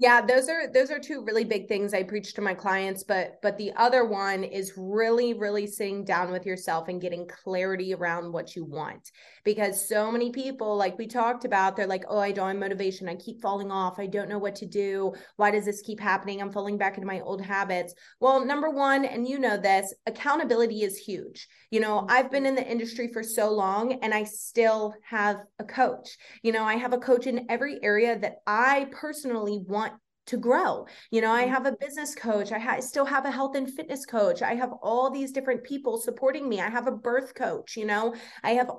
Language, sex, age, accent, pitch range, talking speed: English, female, 20-39, American, 205-255 Hz, 220 wpm